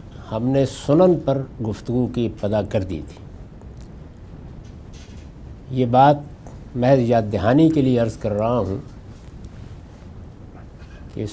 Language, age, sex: Urdu, 60-79, male